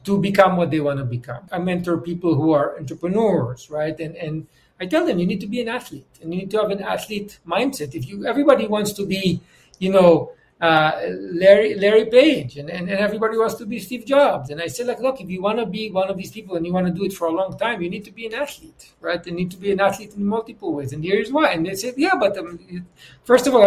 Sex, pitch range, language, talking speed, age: male, 170-230 Hz, English, 270 wpm, 60-79